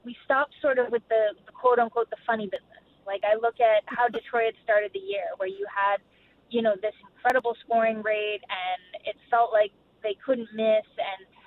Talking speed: 195 wpm